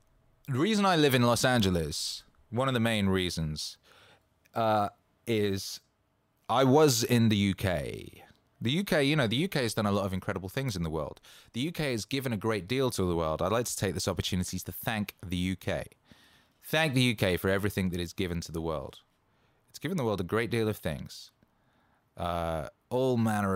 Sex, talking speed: male, 200 wpm